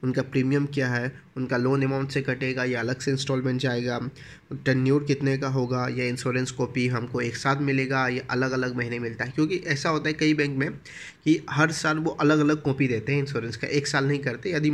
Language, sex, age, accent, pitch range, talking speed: Hindi, male, 20-39, native, 125-150 Hz, 220 wpm